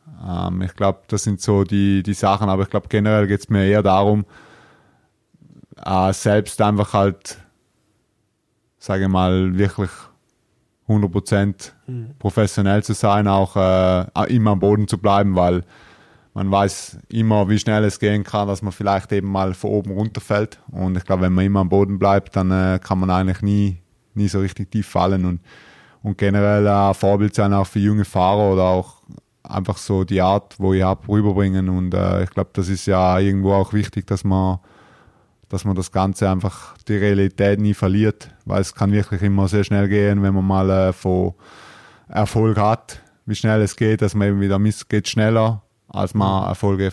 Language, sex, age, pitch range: German, male, 20-39, 95-105 Hz